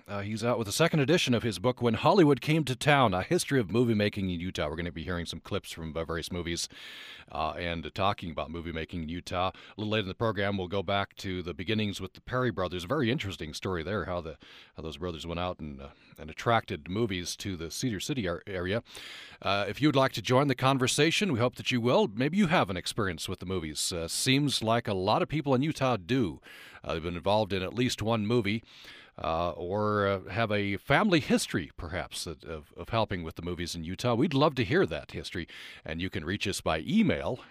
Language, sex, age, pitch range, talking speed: English, male, 40-59, 95-125 Hz, 240 wpm